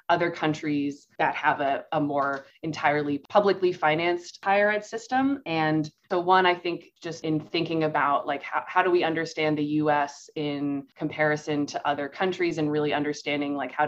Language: English